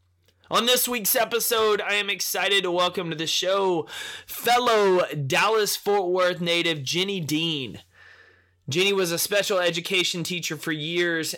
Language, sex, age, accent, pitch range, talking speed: English, male, 20-39, American, 145-190 Hz, 135 wpm